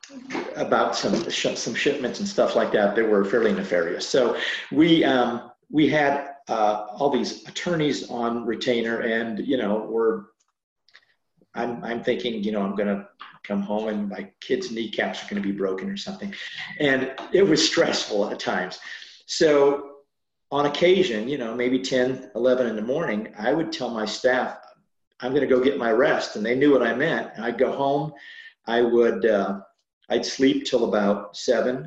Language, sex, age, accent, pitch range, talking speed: English, male, 50-69, American, 110-140 Hz, 180 wpm